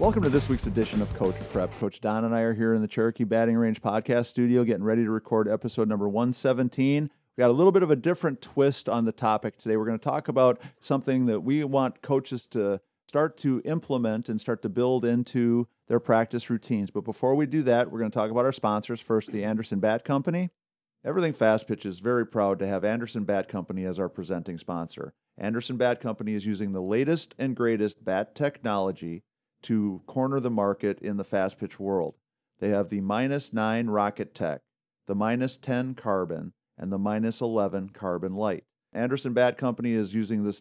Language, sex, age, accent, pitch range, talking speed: English, male, 50-69, American, 105-125 Hz, 205 wpm